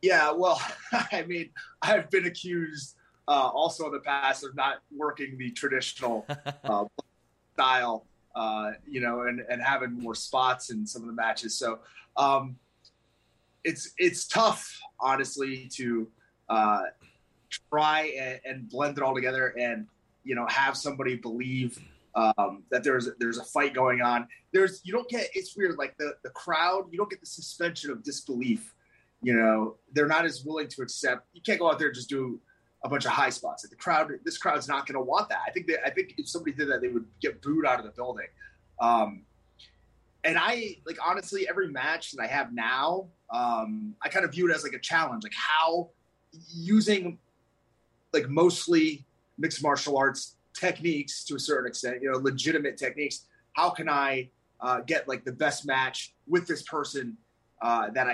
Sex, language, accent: male, English, American